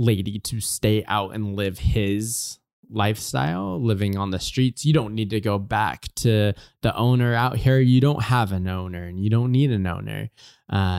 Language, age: English, 20-39